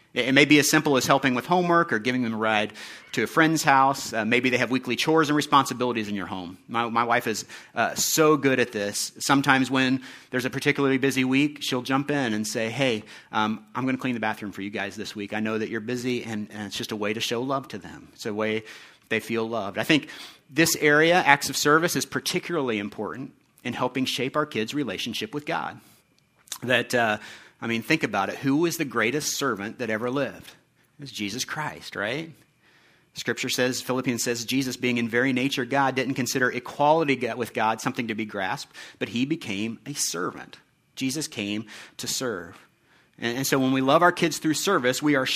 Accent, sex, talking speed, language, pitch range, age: American, male, 215 wpm, English, 110-140 Hz, 40-59